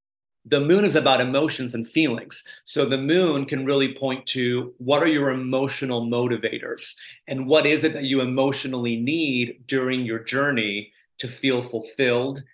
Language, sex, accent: English, male, American